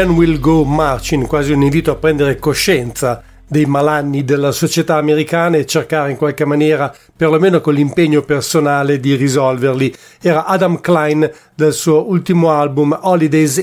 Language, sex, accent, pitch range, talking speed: English, male, Italian, 145-170 Hz, 145 wpm